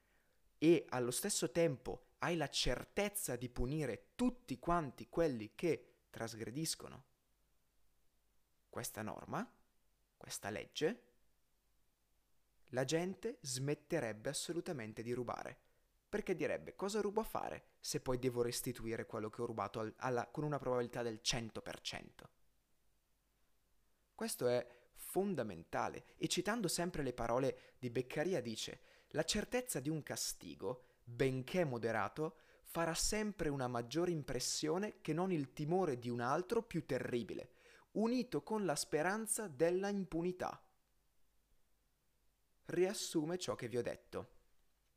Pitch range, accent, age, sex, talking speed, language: 120-175 Hz, native, 20-39, male, 115 wpm, Italian